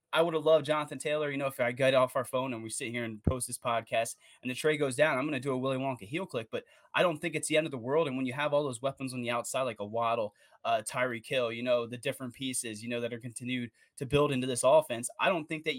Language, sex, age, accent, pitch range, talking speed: English, male, 20-39, American, 120-145 Hz, 310 wpm